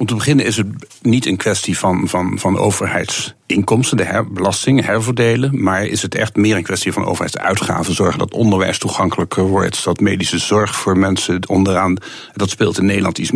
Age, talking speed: 50-69, 175 wpm